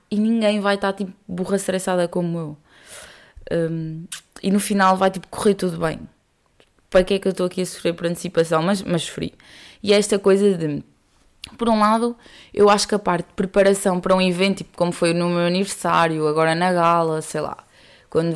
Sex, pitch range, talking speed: female, 165-195 Hz, 200 wpm